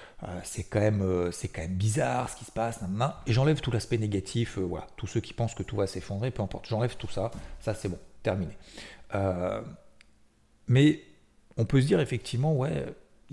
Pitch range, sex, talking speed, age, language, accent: 105-130 Hz, male, 195 wpm, 40-59, French, French